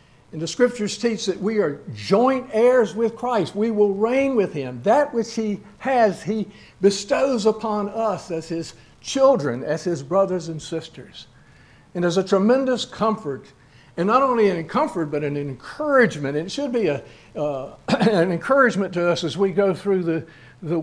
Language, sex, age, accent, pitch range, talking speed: English, male, 60-79, American, 145-210 Hz, 175 wpm